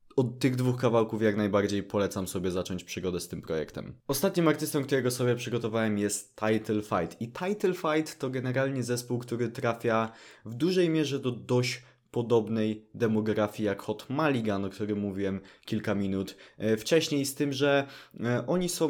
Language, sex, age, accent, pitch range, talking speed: Polish, male, 20-39, native, 105-130 Hz, 160 wpm